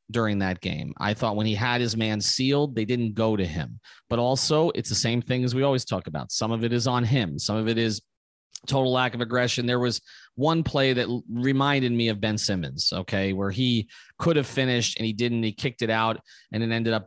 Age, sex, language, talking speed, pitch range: 30-49, male, English, 240 wpm, 105-125 Hz